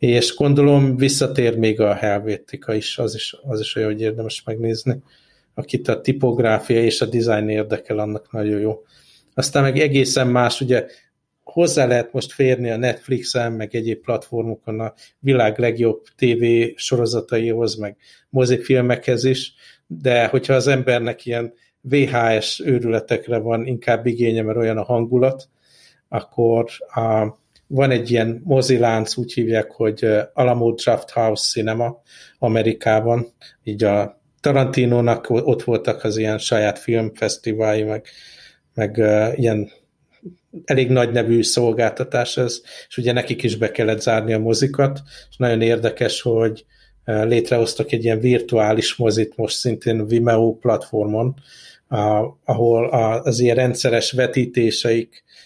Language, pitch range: Hungarian, 110-125 Hz